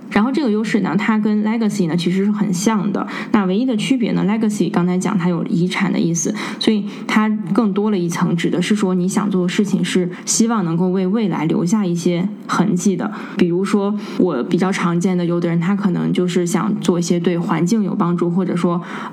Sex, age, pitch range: female, 20-39, 180-215 Hz